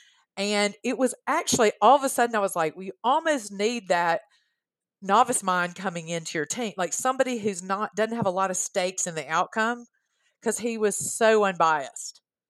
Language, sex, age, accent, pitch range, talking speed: English, female, 40-59, American, 170-220 Hz, 185 wpm